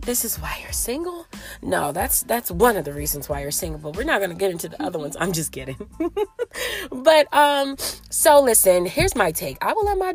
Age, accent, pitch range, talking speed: 30-49, American, 195-325 Hz, 230 wpm